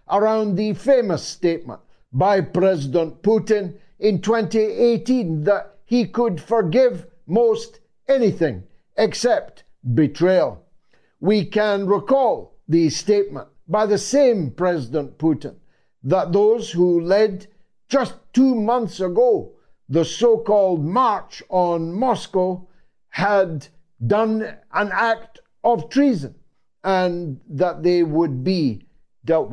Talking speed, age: 105 wpm, 50-69